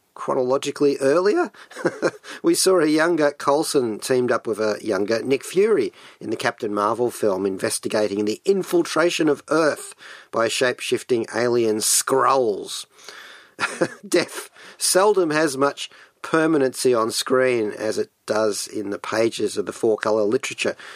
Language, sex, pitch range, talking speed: English, male, 115-170 Hz, 130 wpm